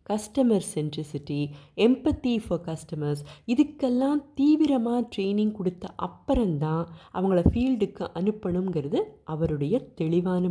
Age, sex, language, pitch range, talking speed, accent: 20-39, female, Tamil, 170-235 Hz, 85 wpm, native